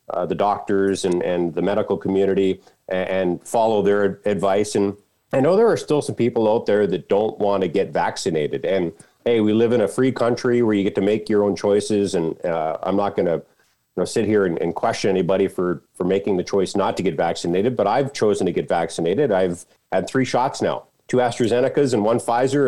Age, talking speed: 40-59, 215 wpm